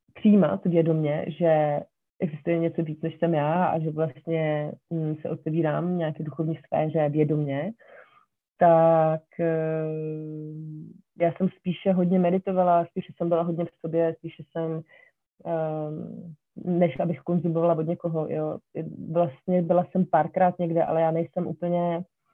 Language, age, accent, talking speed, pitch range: Czech, 30-49, native, 125 wpm, 160-180 Hz